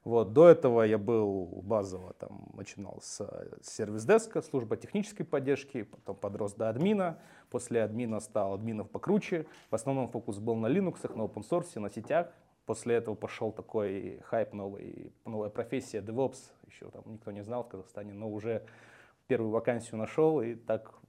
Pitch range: 105-135 Hz